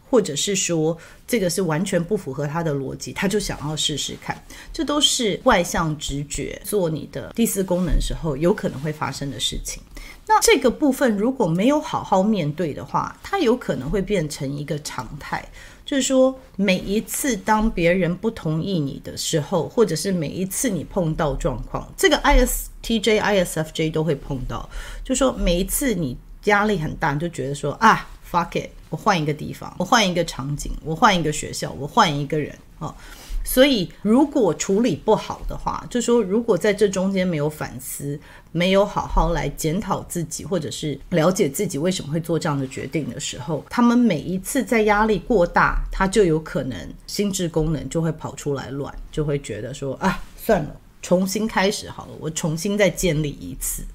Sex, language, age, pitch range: female, Chinese, 30-49, 155-220 Hz